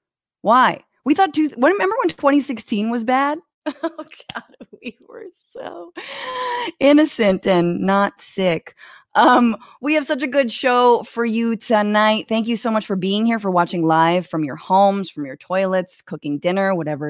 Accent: American